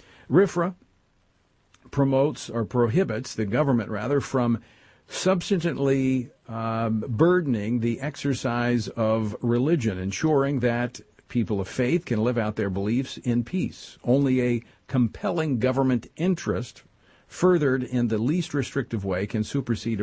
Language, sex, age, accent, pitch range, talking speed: English, male, 50-69, American, 105-130 Hz, 120 wpm